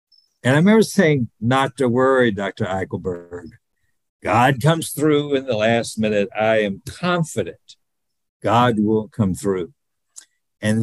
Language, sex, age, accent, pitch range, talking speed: English, male, 60-79, American, 105-150 Hz, 135 wpm